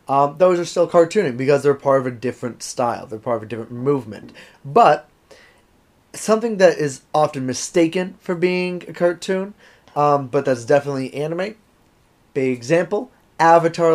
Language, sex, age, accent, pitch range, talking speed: English, male, 30-49, American, 145-180 Hz, 155 wpm